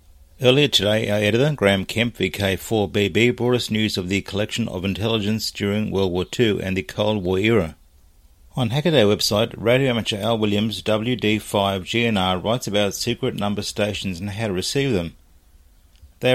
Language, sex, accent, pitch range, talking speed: English, male, Australian, 90-110 Hz, 165 wpm